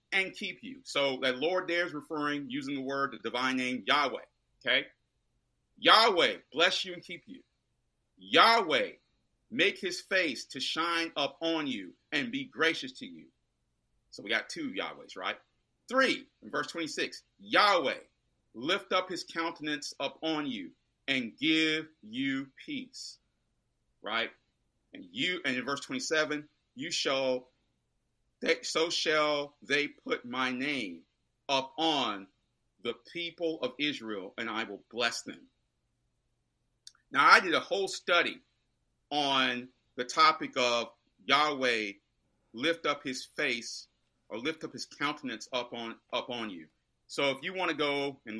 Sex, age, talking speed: male, 40-59, 145 wpm